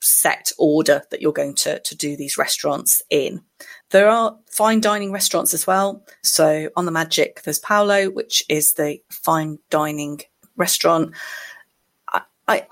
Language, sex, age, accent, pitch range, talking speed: English, female, 30-49, British, 155-205 Hz, 145 wpm